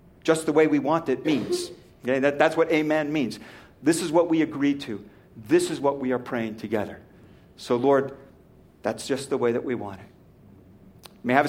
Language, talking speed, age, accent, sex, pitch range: English, 210 wpm, 50-69, American, male, 155-240 Hz